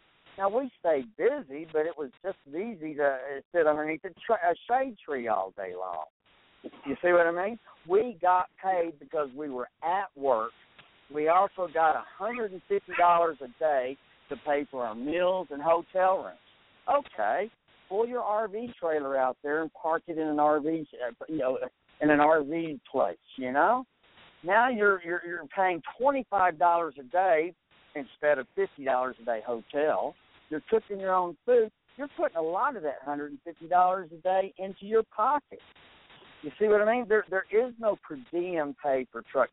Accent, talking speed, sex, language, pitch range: American, 185 wpm, male, English, 145-205 Hz